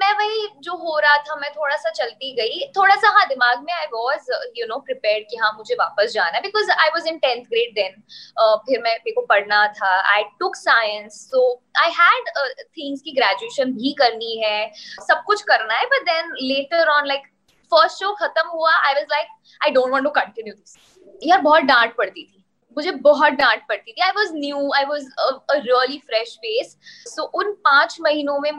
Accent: Indian